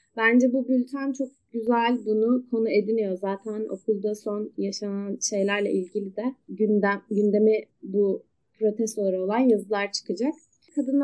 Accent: native